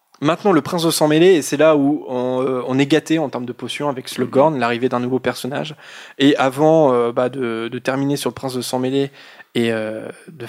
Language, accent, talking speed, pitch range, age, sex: French, French, 235 wpm, 125-155 Hz, 20-39, male